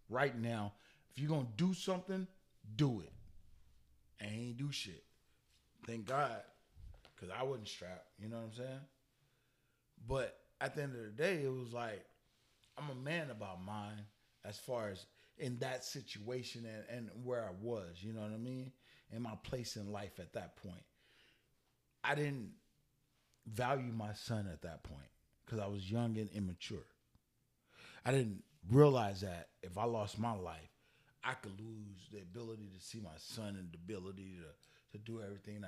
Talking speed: 175 wpm